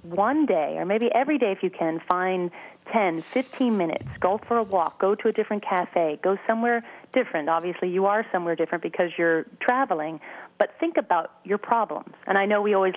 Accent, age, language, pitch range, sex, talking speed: American, 30-49, English, 175-225 Hz, female, 200 wpm